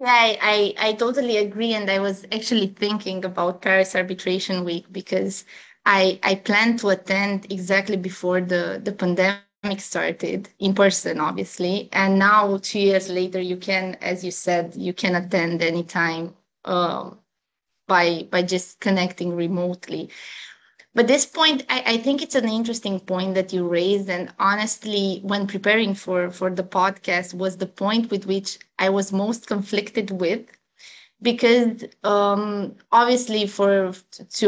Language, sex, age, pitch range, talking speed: Romanian, female, 20-39, 185-210 Hz, 150 wpm